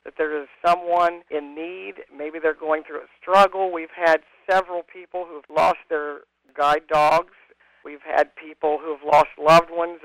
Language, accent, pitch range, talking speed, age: English, American, 155-175 Hz, 165 wpm, 50-69